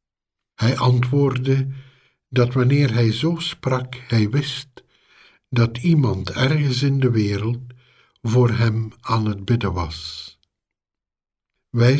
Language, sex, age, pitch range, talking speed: Dutch, male, 60-79, 110-130 Hz, 110 wpm